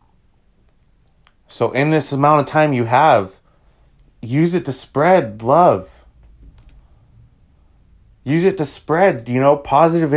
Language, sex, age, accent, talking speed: English, male, 30-49, American, 120 wpm